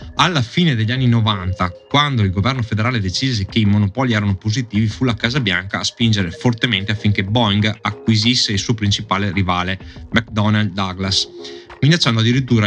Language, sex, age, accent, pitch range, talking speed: Italian, male, 20-39, native, 95-120 Hz, 155 wpm